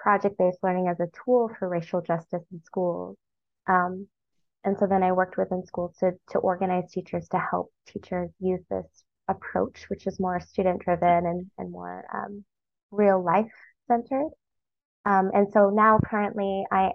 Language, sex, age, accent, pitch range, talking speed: English, female, 20-39, American, 180-205 Hz, 165 wpm